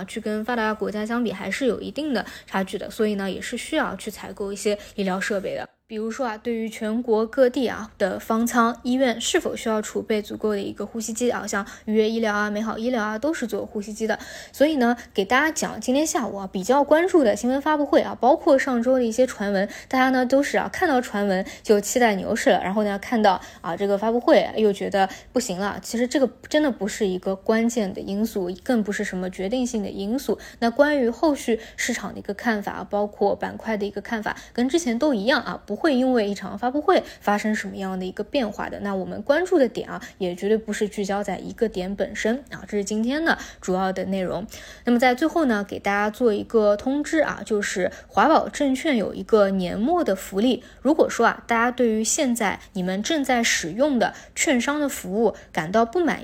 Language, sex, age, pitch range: Chinese, female, 20-39, 200-255 Hz